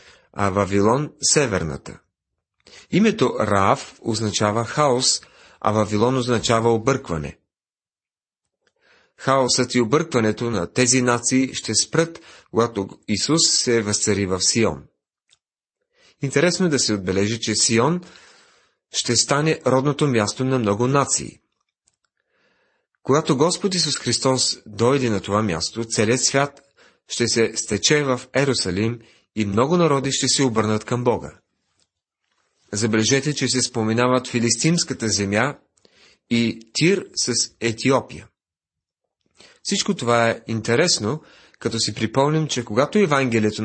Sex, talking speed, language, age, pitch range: male, 115 wpm, Bulgarian, 40-59, 110-135 Hz